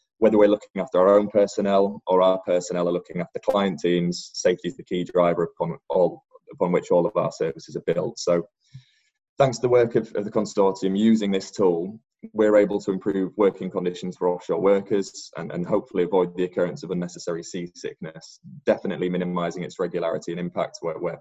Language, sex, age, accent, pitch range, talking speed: English, male, 20-39, British, 90-110 Hz, 190 wpm